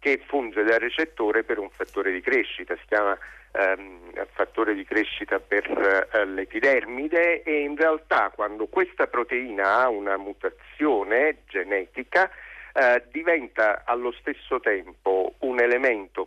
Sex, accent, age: male, native, 50-69